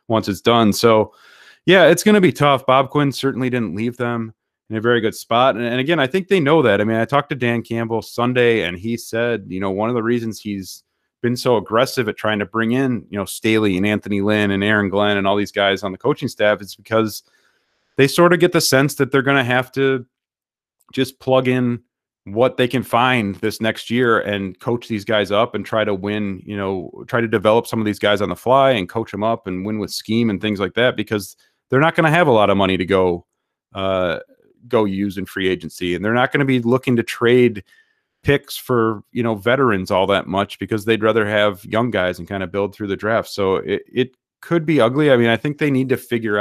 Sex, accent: male, American